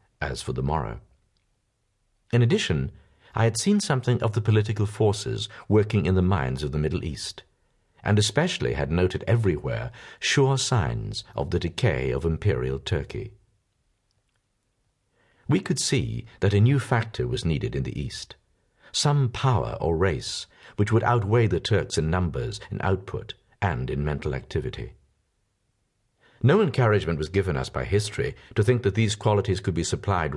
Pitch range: 90-120 Hz